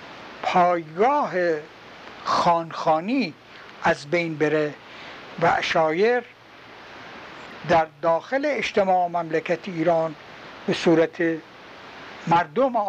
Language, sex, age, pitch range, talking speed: Persian, male, 60-79, 160-205 Hz, 75 wpm